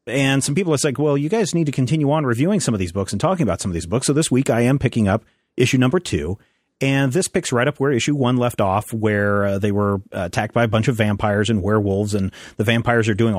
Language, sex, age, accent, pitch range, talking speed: English, male, 40-59, American, 105-135 Hz, 280 wpm